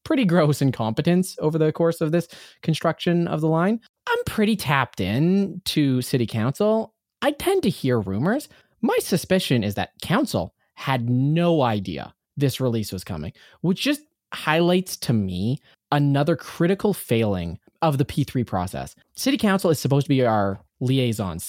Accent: American